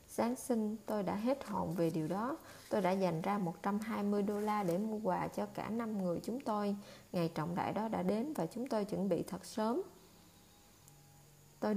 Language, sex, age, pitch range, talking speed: Vietnamese, female, 20-39, 185-230 Hz, 200 wpm